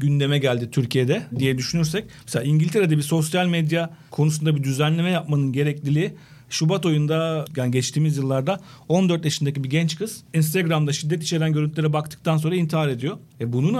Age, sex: 40-59, male